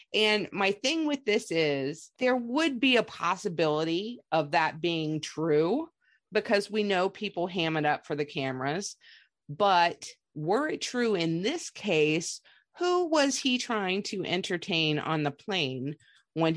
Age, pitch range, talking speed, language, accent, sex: 30-49, 155-220 Hz, 150 wpm, English, American, female